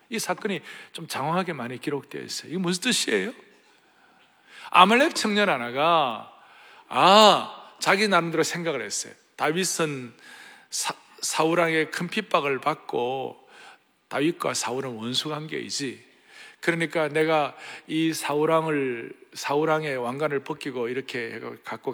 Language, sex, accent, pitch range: Korean, male, native, 140-195 Hz